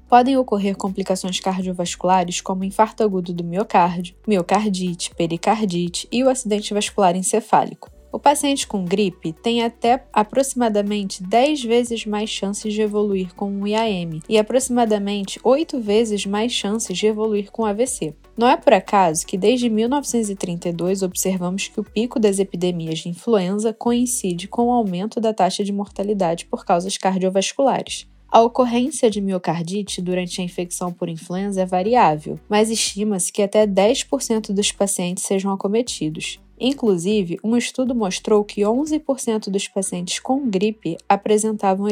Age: 10-29